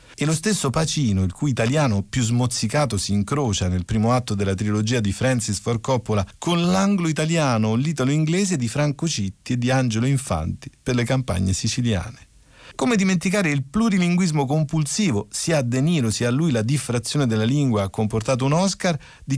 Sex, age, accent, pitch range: male, 40-59, native, 110-155 Hz